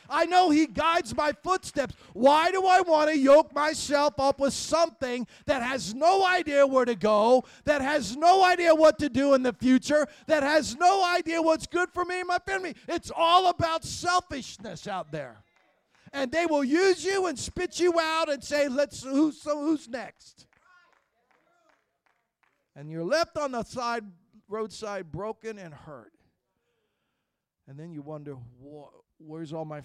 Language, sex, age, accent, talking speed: English, male, 50-69, American, 165 wpm